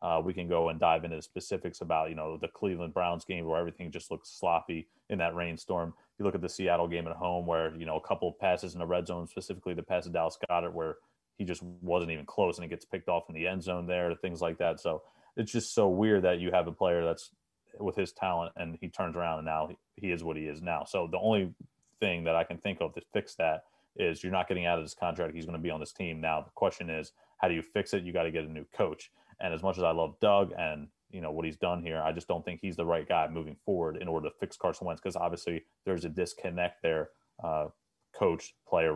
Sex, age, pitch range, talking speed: male, 30-49, 80-90 Hz, 275 wpm